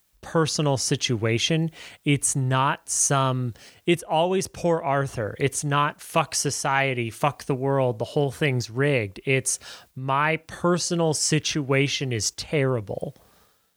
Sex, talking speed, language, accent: male, 115 wpm, English, American